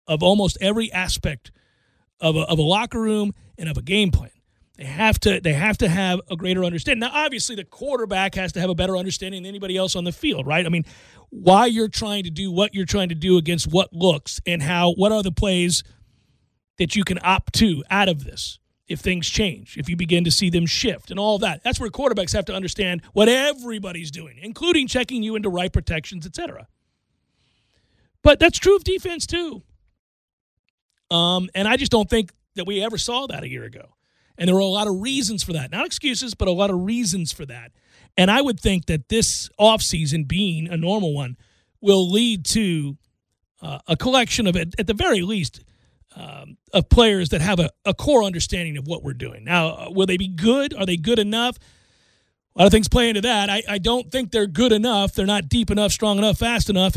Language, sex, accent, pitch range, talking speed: English, male, American, 170-220 Hz, 215 wpm